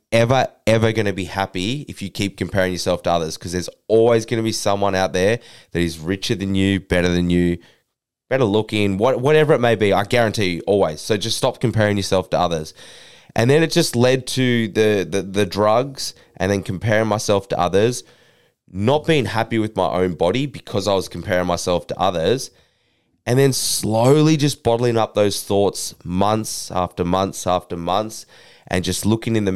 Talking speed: 195 wpm